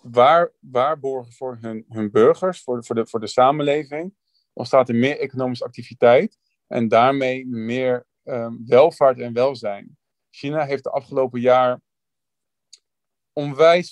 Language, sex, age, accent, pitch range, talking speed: Dutch, male, 40-59, Dutch, 120-140 Hz, 140 wpm